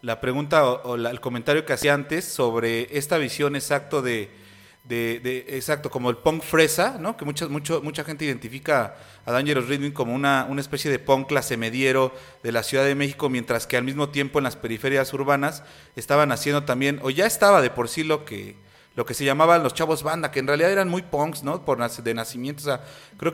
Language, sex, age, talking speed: Spanish, male, 30-49, 220 wpm